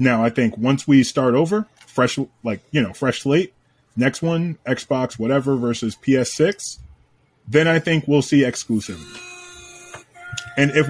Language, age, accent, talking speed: English, 20-39, American, 150 wpm